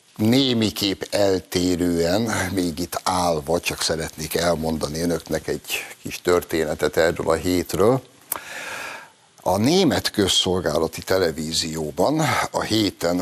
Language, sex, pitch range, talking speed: Hungarian, male, 85-110 Hz, 95 wpm